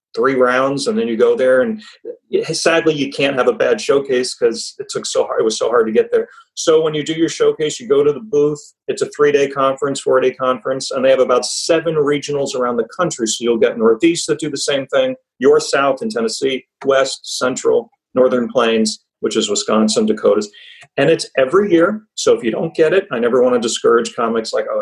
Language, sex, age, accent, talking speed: English, male, 40-59, American, 225 wpm